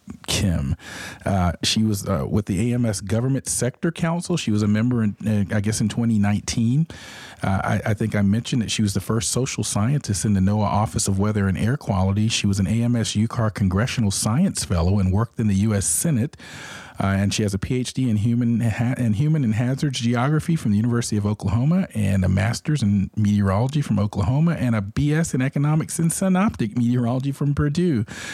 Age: 40-59